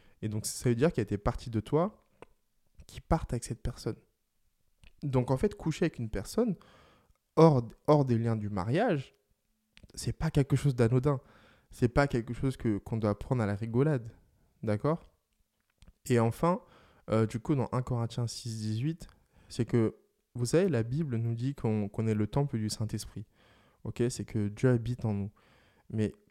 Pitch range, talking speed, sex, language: 105-130 Hz, 185 wpm, male, French